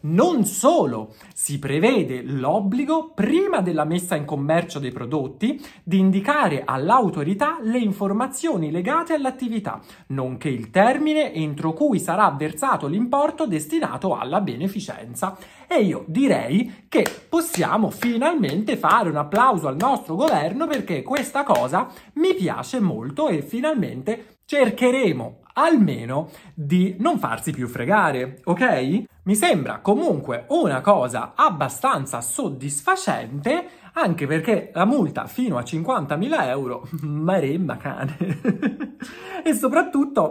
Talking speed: 115 wpm